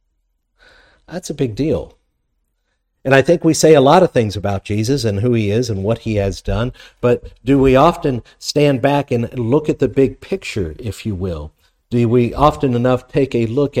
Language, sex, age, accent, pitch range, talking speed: English, male, 50-69, American, 95-130 Hz, 200 wpm